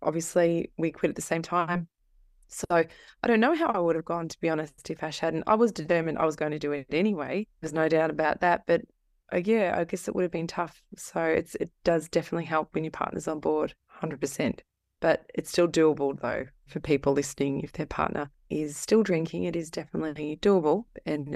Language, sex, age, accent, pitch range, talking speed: English, female, 20-39, Australian, 155-200 Hz, 215 wpm